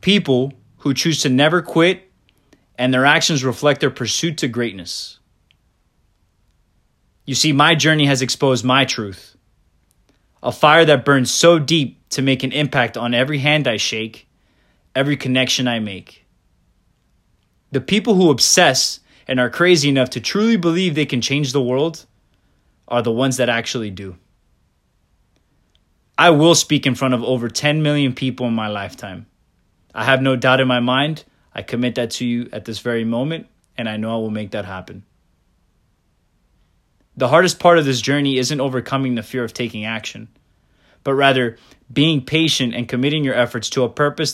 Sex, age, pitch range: male, 20-39, 110-145 Hz